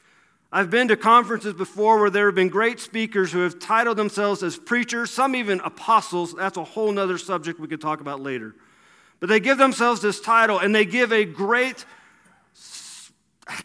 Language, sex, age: English, male, 40-59